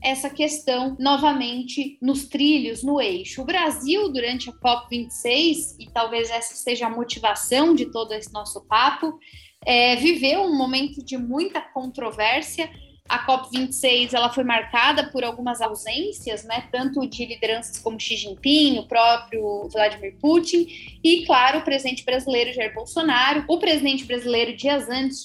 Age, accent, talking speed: 10-29, Brazilian, 145 wpm